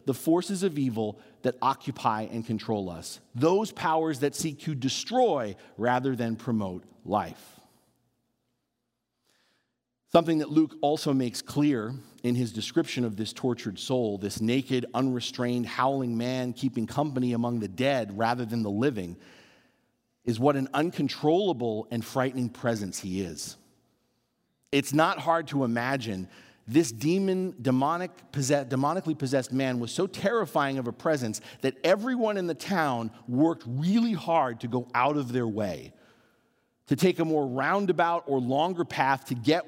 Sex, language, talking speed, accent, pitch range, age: male, English, 145 wpm, American, 120-150 Hz, 40-59